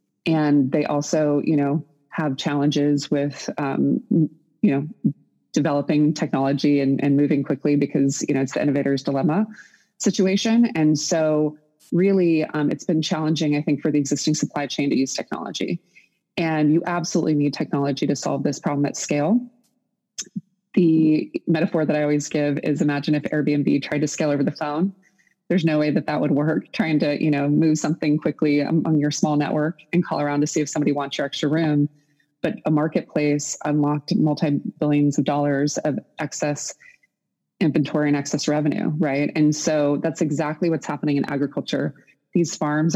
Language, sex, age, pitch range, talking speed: English, female, 20-39, 145-160 Hz, 170 wpm